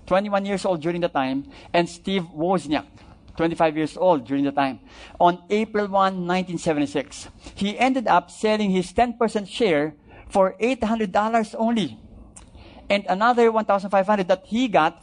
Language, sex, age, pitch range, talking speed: English, male, 50-69, 155-205 Hz, 140 wpm